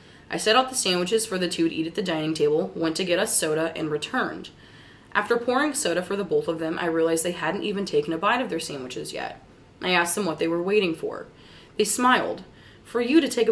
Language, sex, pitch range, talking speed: English, female, 165-220 Hz, 245 wpm